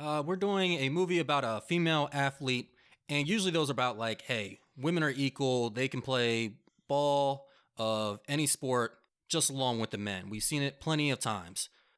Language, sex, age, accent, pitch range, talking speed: English, male, 20-39, American, 120-175 Hz, 185 wpm